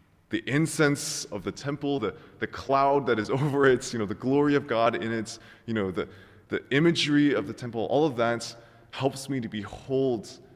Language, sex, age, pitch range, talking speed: English, male, 20-39, 95-130 Hz, 200 wpm